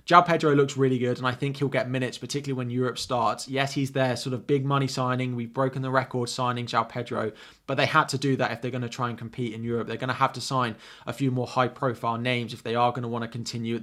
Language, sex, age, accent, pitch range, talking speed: English, male, 20-39, British, 120-140 Hz, 285 wpm